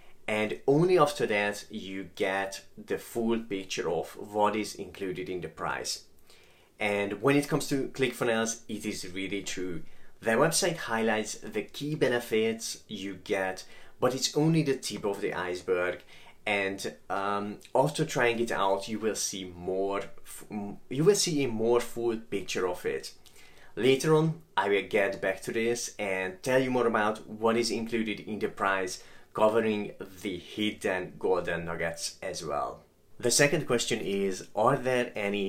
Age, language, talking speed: 30-49, English, 160 wpm